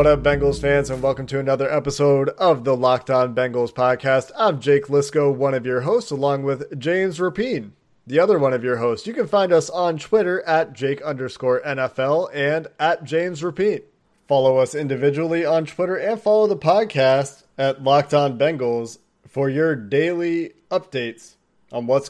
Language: English